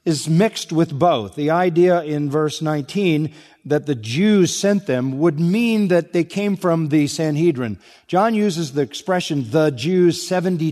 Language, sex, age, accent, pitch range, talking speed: English, male, 50-69, American, 140-185 Hz, 160 wpm